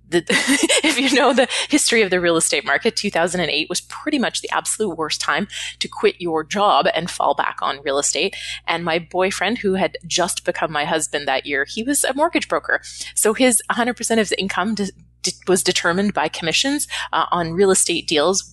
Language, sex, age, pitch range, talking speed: English, female, 20-39, 160-200 Hz, 190 wpm